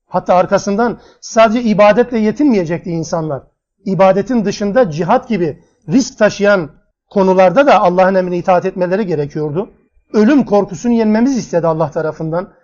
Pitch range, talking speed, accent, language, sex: 165-225 Hz, 120 wpm, native, Turkish, male